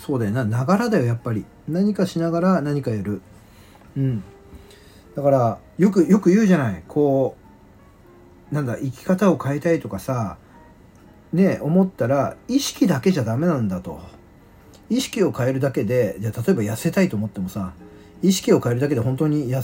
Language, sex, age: Japanese, male, 40-59